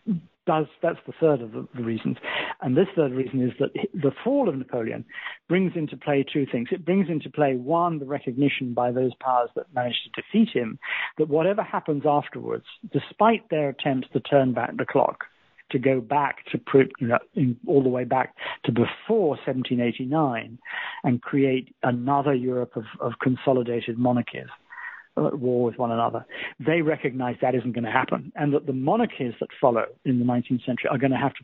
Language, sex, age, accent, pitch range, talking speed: English, male, 50-69, British, 125-155 Hz, 180 wpm